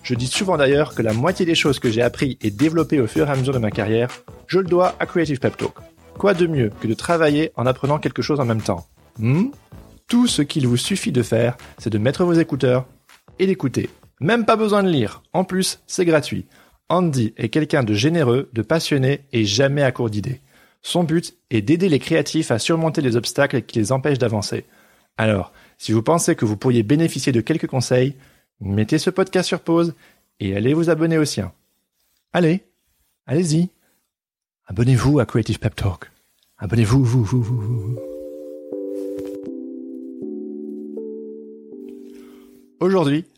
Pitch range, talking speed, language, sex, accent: 115-160 Hz, 175 wpm, French, male, French